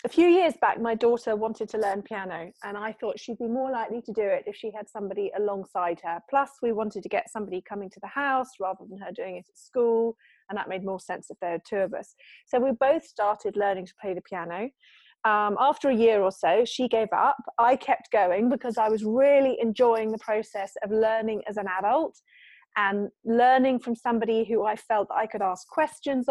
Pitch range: 205-255 Hz